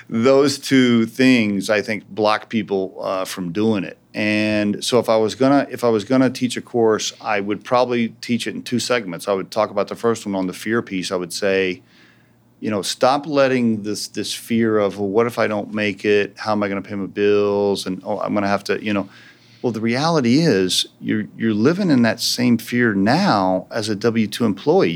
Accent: American